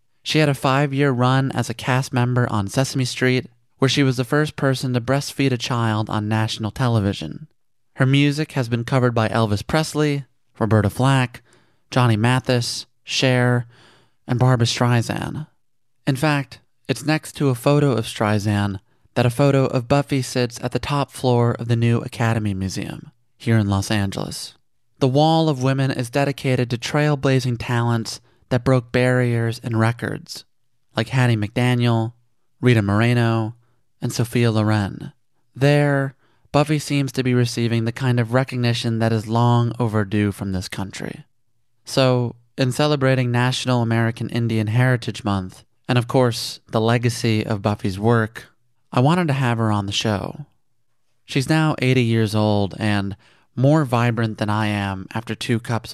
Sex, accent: male, American